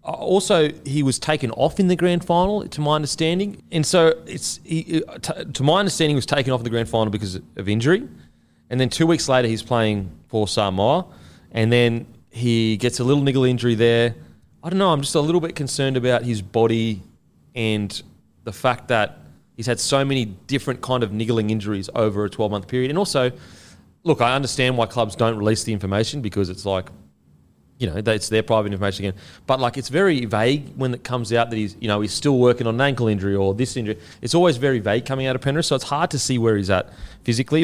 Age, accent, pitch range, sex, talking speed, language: 30-49, Australian, 105-135 Hz, male, 220 wpm, English